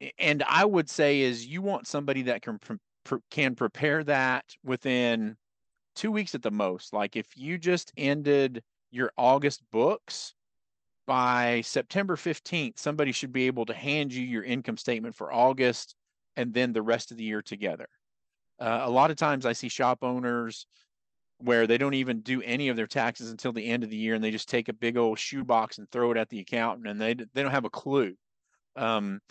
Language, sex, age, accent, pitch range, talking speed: English, male, 40-59, American, 115-145 Hz, 200 wpm